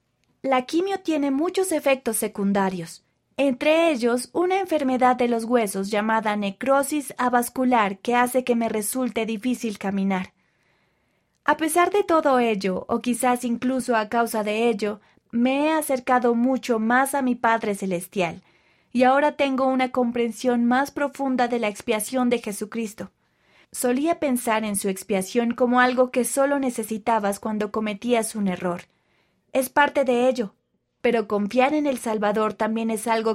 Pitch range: 210-260 Hz